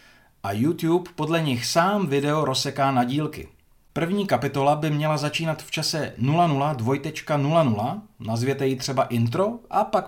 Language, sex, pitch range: Czech, male, 115-170 Hz